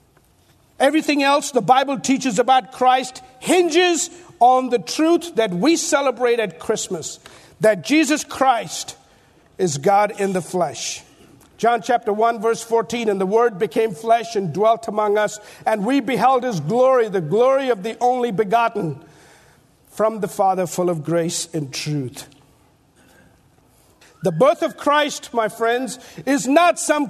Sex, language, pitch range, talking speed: male, English, 205-290 Hz, 145 wpm